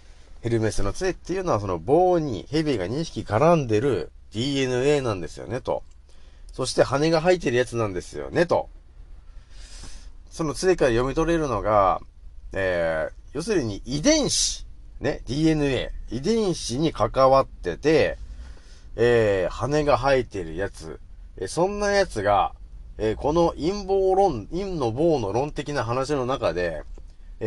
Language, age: Japanese, 40-59